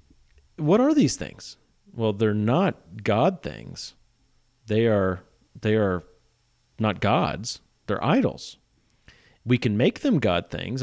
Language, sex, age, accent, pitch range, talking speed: English, male, 40-59, American, 105-150 Hz, 125 wpm